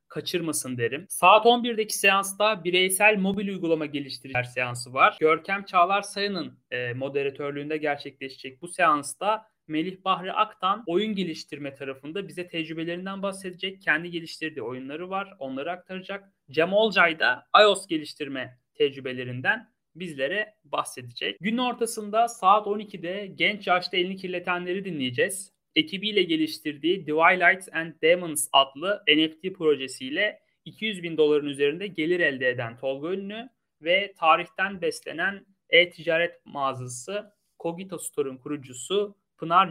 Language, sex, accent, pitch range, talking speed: Turkish, male, native, 145-195 Hz, 120 wpm